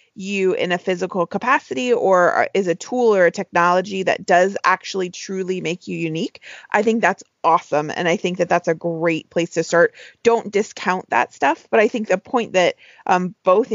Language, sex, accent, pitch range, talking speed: English, female, American, 170-195 Hz, 195 wpm